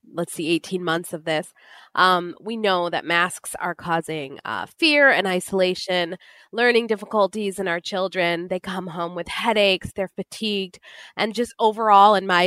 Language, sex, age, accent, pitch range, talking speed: English, female, 20-39, American, 185-230 Hz, 165 wpm